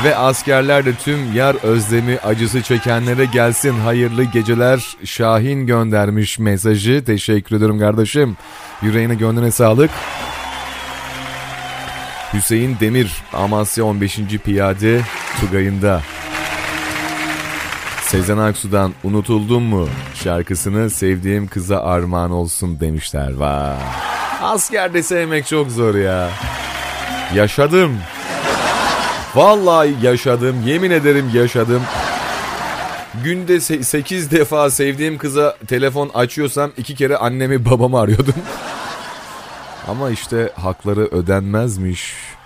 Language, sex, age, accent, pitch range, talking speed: Turkish, male, 30-49, native, 100-130 Hz, 90 wpm